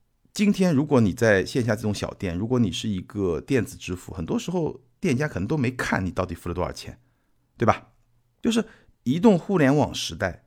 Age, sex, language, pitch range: 50-69, male, Chinese, 100-150 Hz